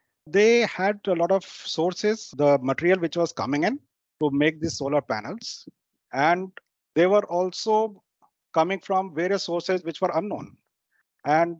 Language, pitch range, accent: English, 150-185 Hz, Indian